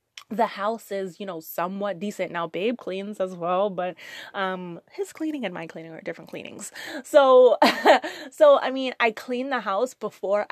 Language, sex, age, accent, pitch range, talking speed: English, female, 20-39, American, 185-225 Hz, 175 wpm